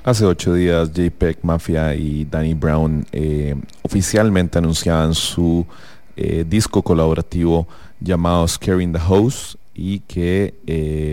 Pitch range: 80-90 Hz